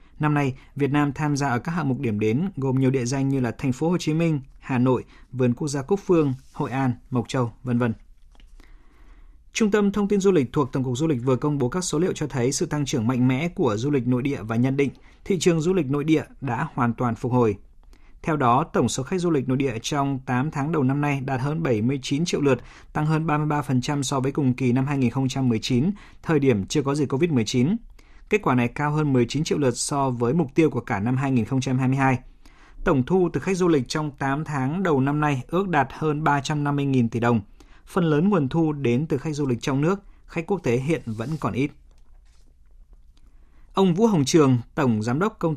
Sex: male